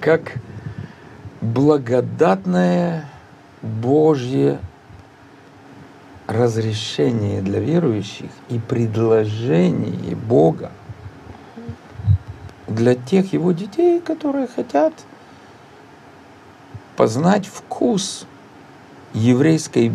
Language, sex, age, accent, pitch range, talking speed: Russian, male, 50-69, native, 110-175 Hz, 55 wpm